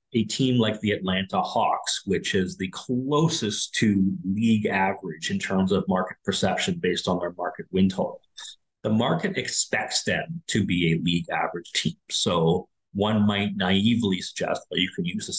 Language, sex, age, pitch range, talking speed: English, male, 30-49, 95-125 Hz, 170 wpm